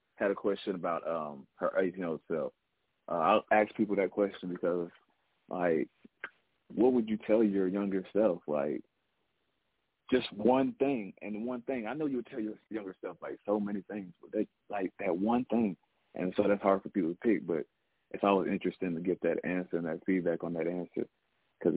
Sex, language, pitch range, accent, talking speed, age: male, English, 90-110 Hz, American, 200 wpm, 40-59